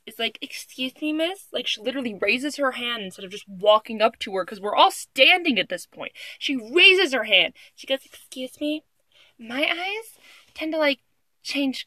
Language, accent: English, American